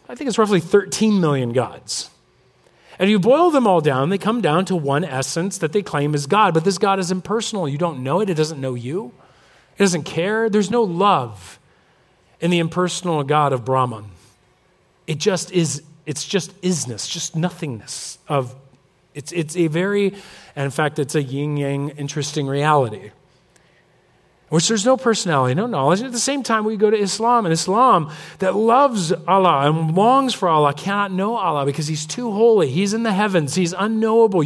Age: 40-59